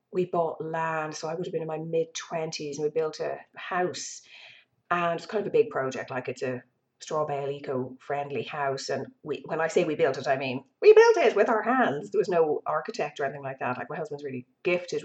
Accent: Irish